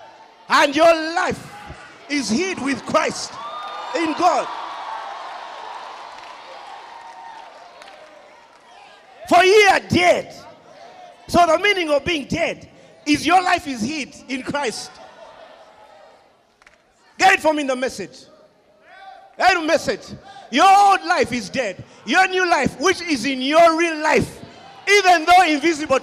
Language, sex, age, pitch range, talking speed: English, male, 50-69, 275-370 Hz, 115 wpm